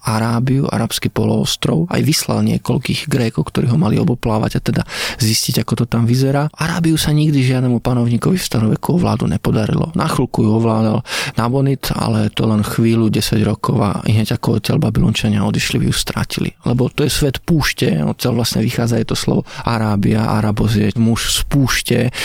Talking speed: 175 wpm